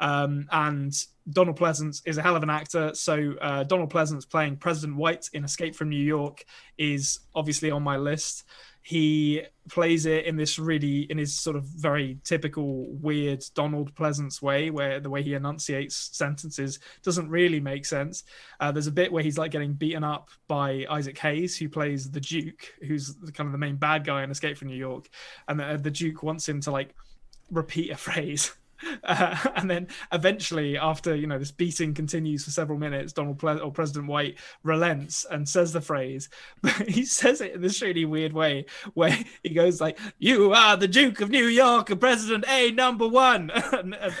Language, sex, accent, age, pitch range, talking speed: English, male, British, 20-39, 145-170 Hz, 190 wpm